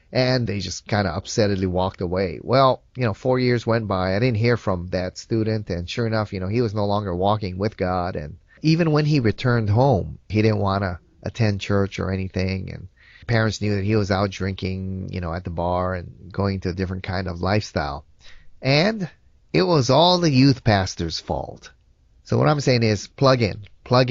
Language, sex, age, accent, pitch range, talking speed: English, male, 30-49, American, 95-130 Hz, 210 wpm